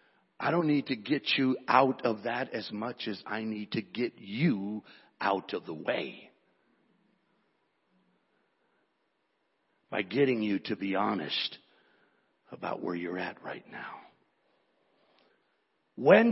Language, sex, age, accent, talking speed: English, male, 60-79, American, 125 wpm